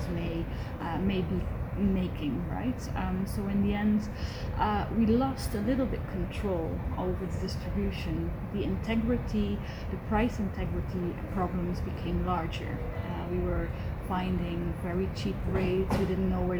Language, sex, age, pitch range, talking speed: English, female, 20-39, 90-110 Hz, 145 wpm